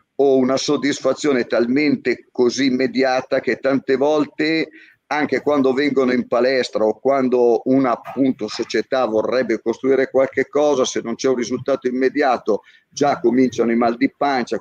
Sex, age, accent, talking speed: male, 50-69, native, 145 wpm